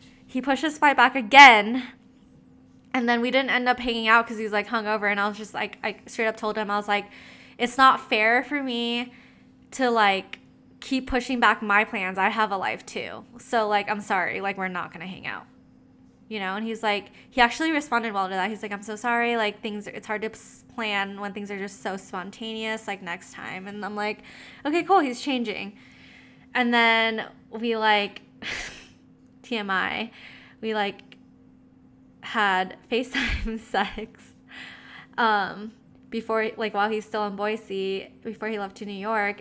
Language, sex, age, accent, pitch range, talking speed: English, female, 10-29, American, 195-230 Hz, 185 wpm